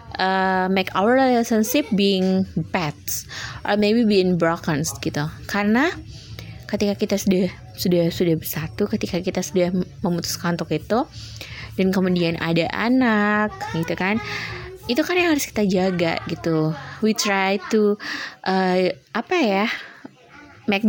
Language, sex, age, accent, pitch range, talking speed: Indonesian, female, 20-39, native, 170-210 Hz, 125 wpm